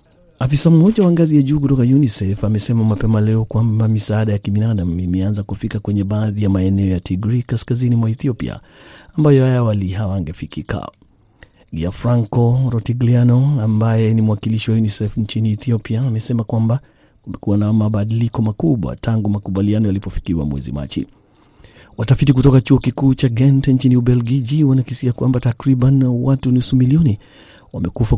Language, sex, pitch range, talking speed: Swahili, male, 105-125 Hz, 140 wpm